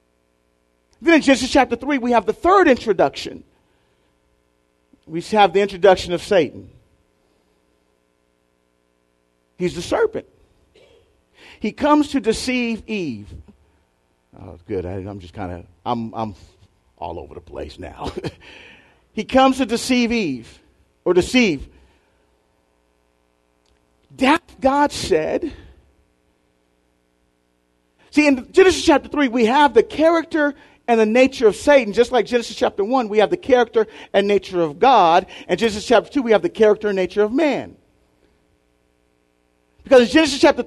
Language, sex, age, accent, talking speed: English, male, 40-59, American, 135 wpm